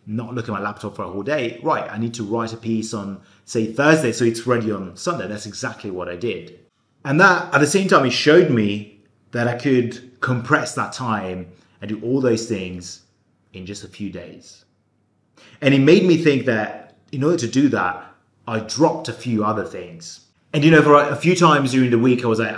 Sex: male